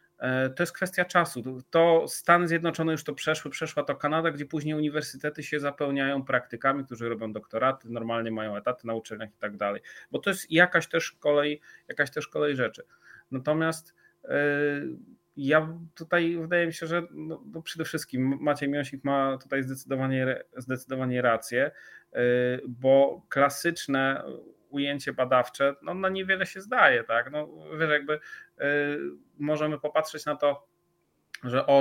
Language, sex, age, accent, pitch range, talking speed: Polish, male, 30-49, native, 135-160 Hz, 140 wpm